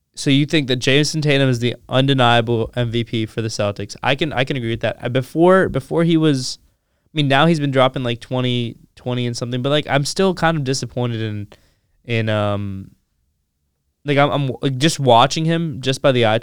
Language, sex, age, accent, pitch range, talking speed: English, male, 20-39, American, 110-135 Hz, 210 wpm